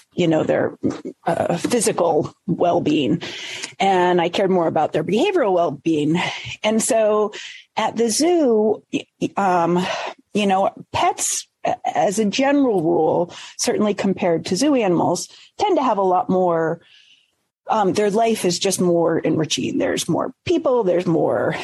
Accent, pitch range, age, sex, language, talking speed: American, 170-225 Hz, 40-59, female, English, 140 wpm